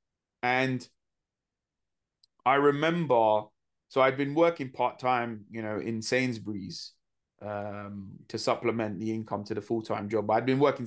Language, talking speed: English, 135 wpm